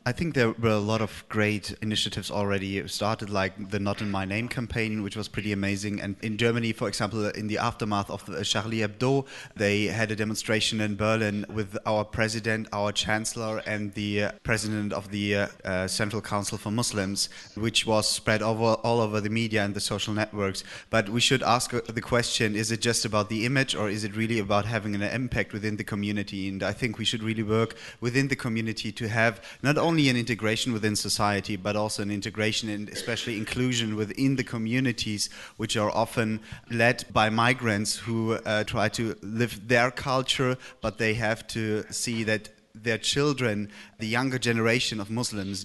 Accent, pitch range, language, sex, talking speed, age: German, 105-115 Hz, English, male, 190 wpm, 20-39